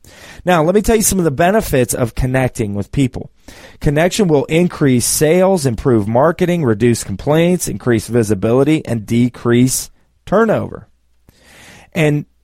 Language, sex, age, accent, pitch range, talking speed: English, male, 30-49, American, 120-170 Hz, 130 wpm